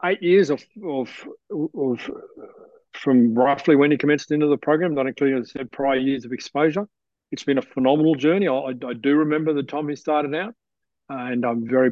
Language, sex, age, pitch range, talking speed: English, male, 40-59, 125-150 Hz, 200 wpm